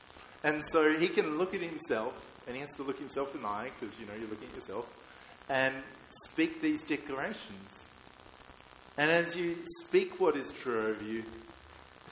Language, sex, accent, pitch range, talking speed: English, male, Australian, 90-140 Hz, 190 wpm